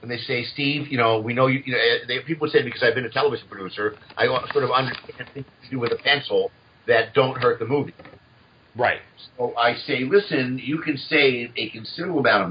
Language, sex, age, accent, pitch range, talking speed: English, male, 50-69, American, 115-160 Hz, 225 wpm